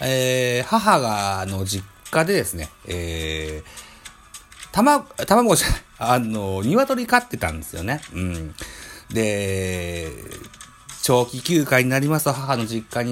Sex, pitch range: male, 95-140 Hz